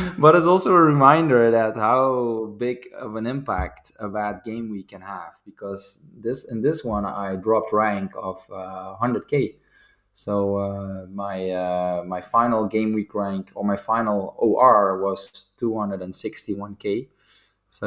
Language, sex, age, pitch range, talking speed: English, male, 20-39, 100-125 Hz, 150 wpm